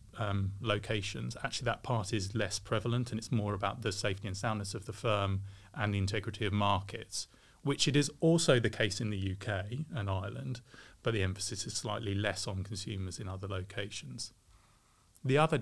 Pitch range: 100-115 Hz